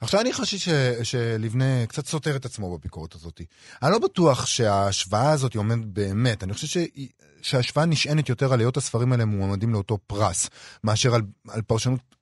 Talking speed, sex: 165 wpm, male